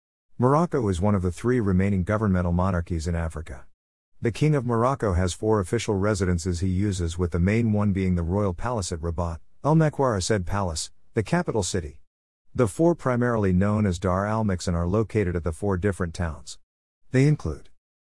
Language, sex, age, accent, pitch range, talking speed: English, male, 50-69, American, 85-110 Hz, 180 wpm